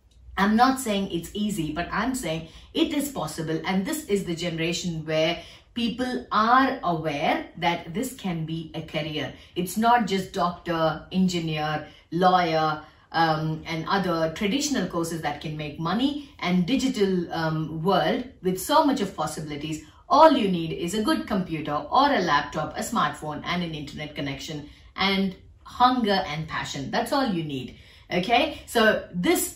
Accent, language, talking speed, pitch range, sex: native, Tamil, 155 wpm, 160-215 Hz, female